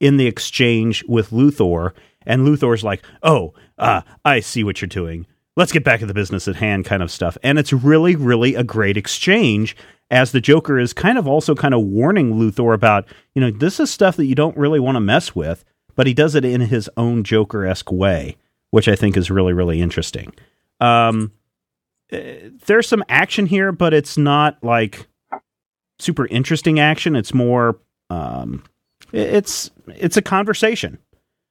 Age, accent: 40-59, American